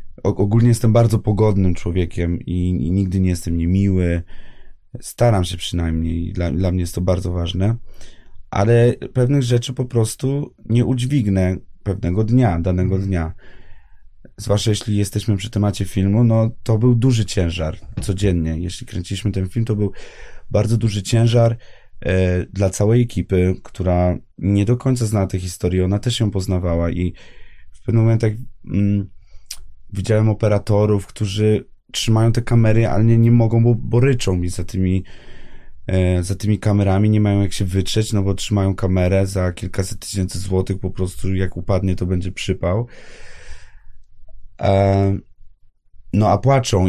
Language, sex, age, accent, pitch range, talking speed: Polish, male, 30-49, native, 90-110 Hz, 145 wpm